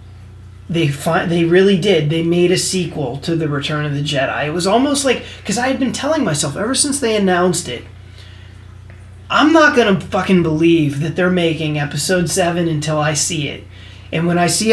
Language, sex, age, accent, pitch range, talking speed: English, male, 30-49, American, 140-195 Hz, 195 wpm